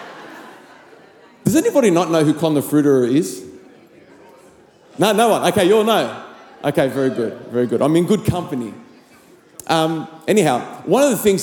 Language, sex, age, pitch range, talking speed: English, male, 40-59, 155-210 Hz, 165 wpm